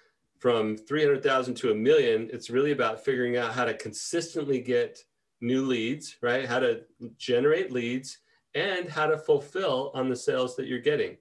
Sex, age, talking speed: male, 30-49, 165 wpm